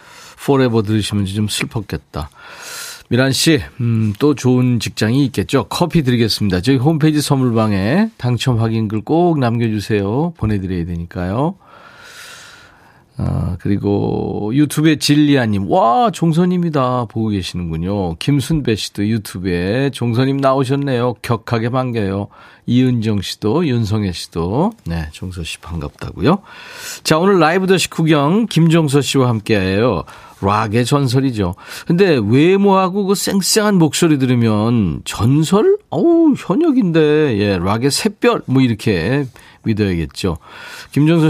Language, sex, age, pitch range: Korean, male, 40-59, 105-155 Hz